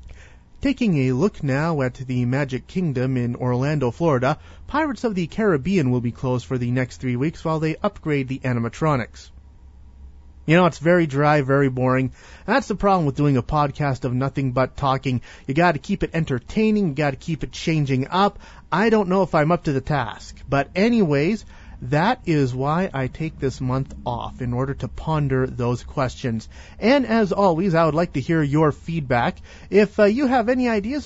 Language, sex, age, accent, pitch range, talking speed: English, male, 30-49, American, 130-185 Hz, 190 wpm